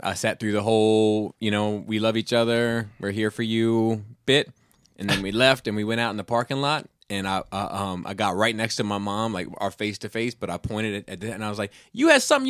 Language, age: English, 30-49